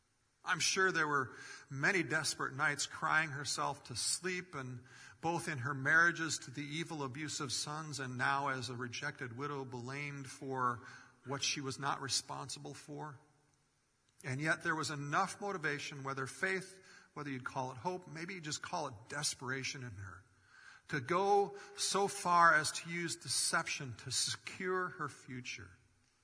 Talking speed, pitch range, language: 155 wpm, 135-190 Hz, English